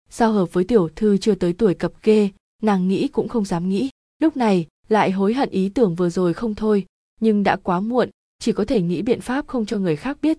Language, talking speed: Vietnamese, 245 wpm